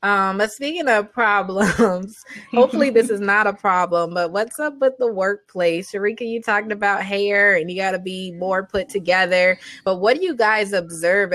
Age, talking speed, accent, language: 20-39, 185 wpm, American, English